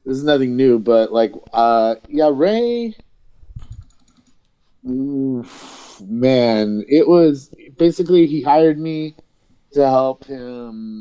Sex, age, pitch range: male, 30-49, 100-130 Hz